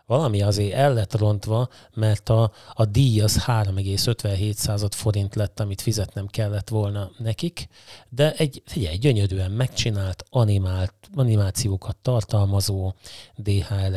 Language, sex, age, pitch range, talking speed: Hungarian, male, 30-49, 100-125 Hz, 120 wpm